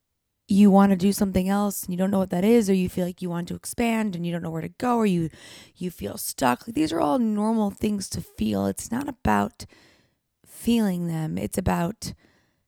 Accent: American